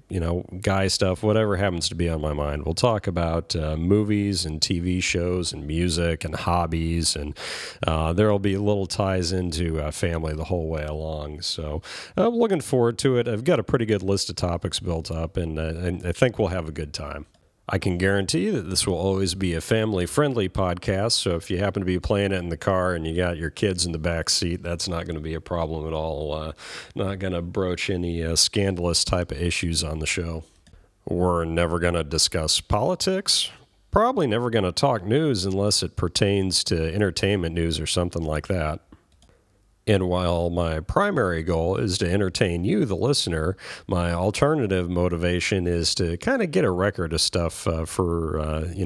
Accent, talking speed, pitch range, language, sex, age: American, 205 wpm, 85-95 Hz, English, male, 40-59